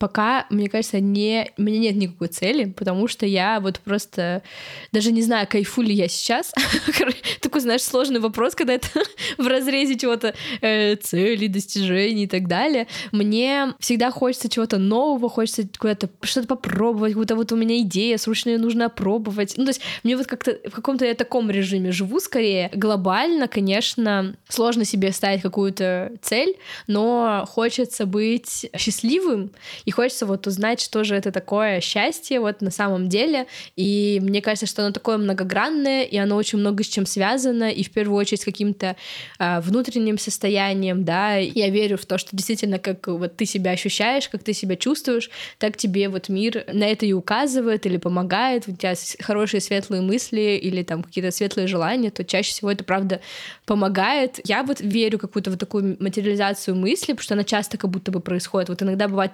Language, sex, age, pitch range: Russian, female, 10-29, 195-235 Hz